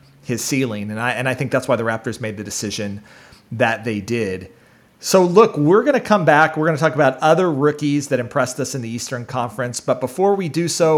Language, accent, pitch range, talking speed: English, American, 135-195 Hz, 235 wpm